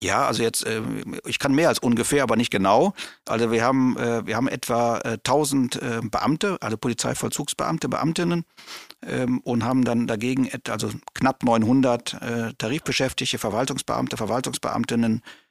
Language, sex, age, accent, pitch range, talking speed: German, male, 50-69, German, 120-140 Hz, 125 wpm